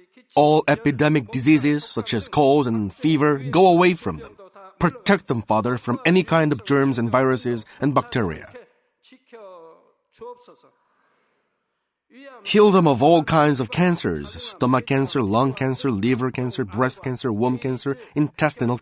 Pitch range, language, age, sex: 130-155 Hz, Korean, 30-49, male